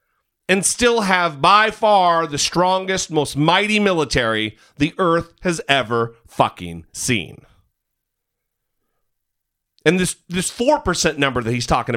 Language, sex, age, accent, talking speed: English, male, 40-59, American, 120 wpm